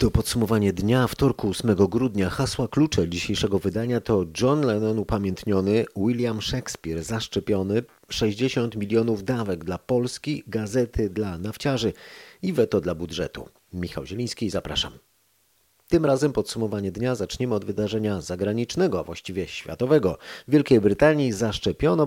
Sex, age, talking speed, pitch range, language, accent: male, 40-59, 130 wpm, 95-120 Hz, Polish, native